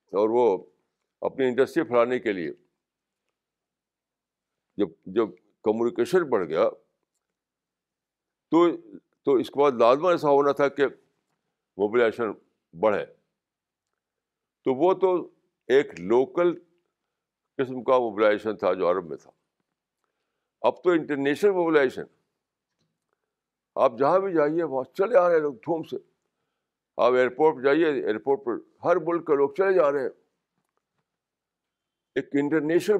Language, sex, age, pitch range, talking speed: Urdu, male, 60-79, 130-195 Hz, 120 wpm